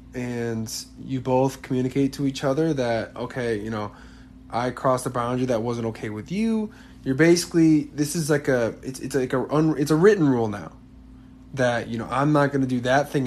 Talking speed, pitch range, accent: 210 wpm, 120-150 Hz, American